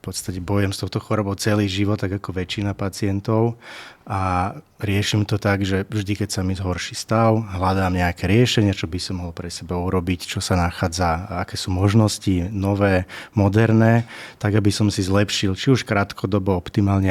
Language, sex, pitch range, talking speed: Slovak, male, 90-105 Hz, 180 wpm